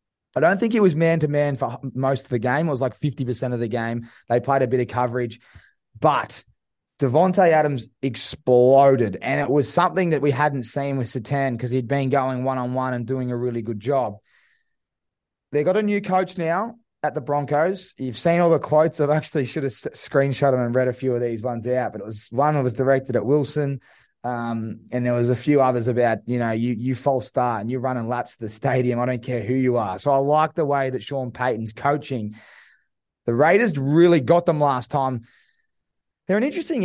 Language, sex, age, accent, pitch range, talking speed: English, male, 20-39, Australian, 125-150 Hz, 220 wpm